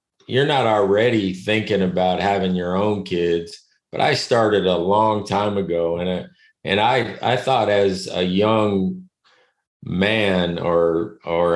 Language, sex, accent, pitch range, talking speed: English, male, American, 85-105 Hz, 145 wpm